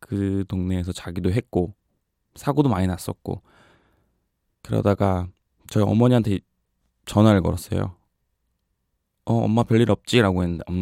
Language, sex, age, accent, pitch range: Korean, male, 20-39, native, 90-110 Hz